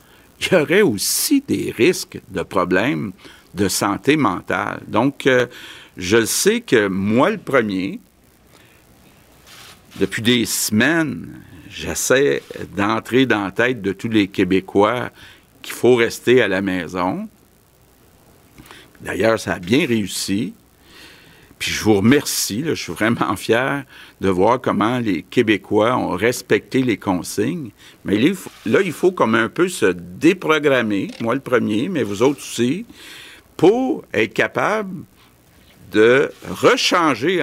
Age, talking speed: 60-79, 130 wpm